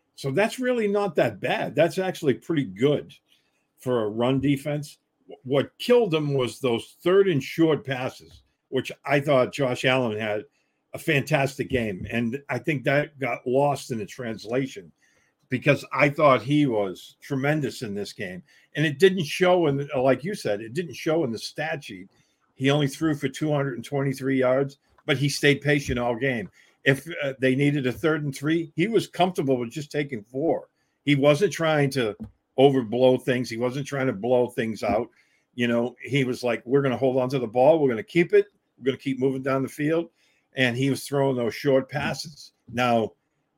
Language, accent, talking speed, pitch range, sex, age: English, American, 195 wpm, 125-150 Hz, male, 50-69